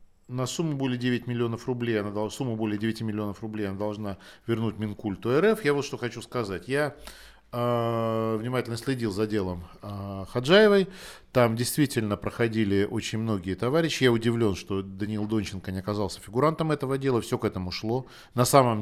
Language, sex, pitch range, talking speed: Russian, male, 105-120 Hz, 150 wpm